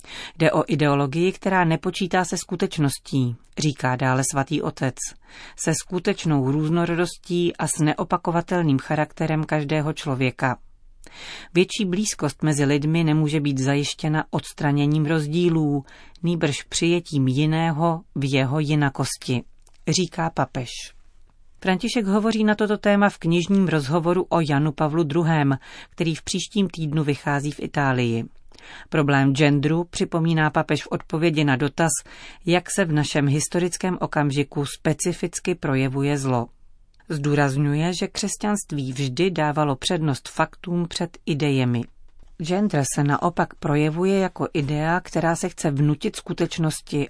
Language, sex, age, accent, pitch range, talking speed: Czech, female, 40-59, native, 140-175 Hz, 120 wpm